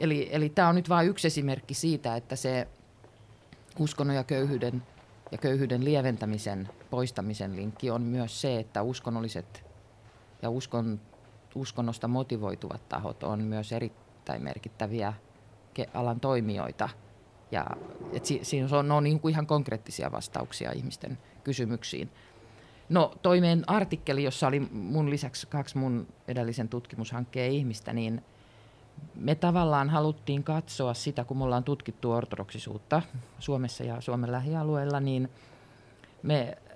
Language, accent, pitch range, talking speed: Finnish, native, 115-145 Hz, 120 wpm